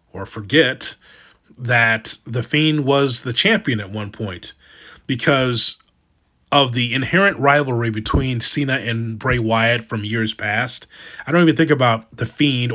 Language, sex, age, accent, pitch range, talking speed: English, male, 30-49, American, 115-140 Hz, 145 wpm